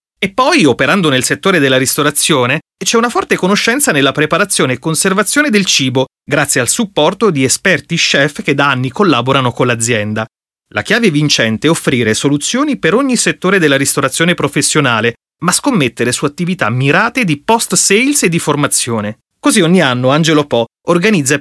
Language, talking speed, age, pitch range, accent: Italian, 160 wpm, 30-49, 130-195 Hz, native